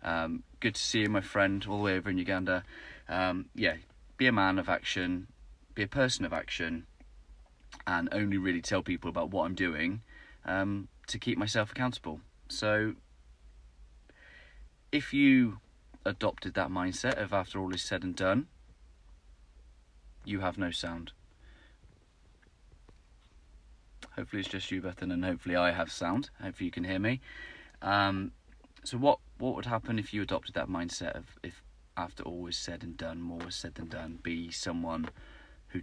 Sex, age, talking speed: male, 30-49, 160 wpm